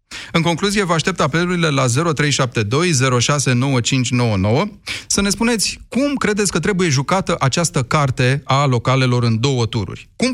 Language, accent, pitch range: Romanian, native, 120-160 Hz